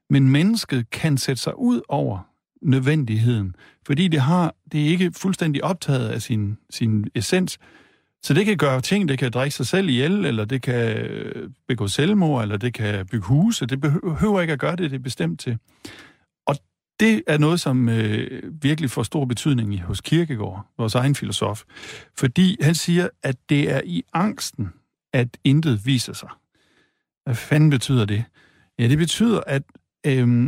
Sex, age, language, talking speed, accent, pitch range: male, 50-69, Danish, 175 wpm, native, 120-160 Hz